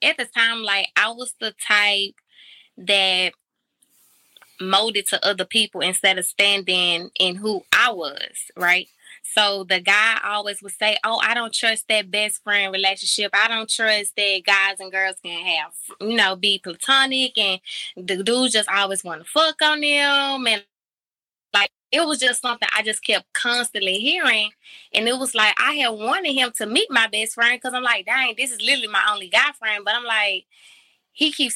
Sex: female